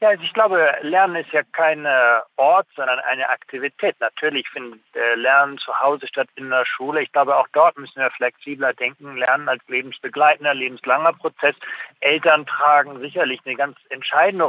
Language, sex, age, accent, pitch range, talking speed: German, male, 40-59, German, 130-170 Hz, 160 wpm